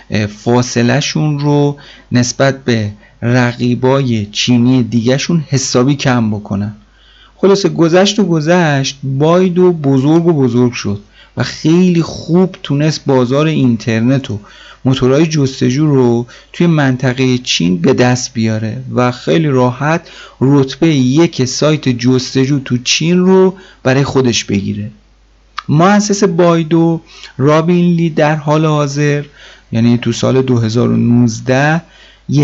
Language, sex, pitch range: Persian, male, 115-150 Hz